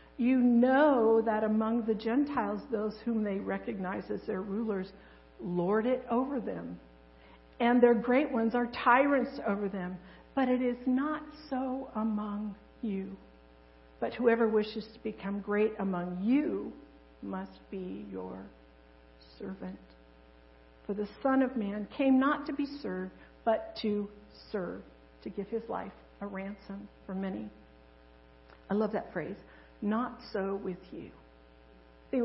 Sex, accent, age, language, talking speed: female, American, 60-79, English, 140 wpm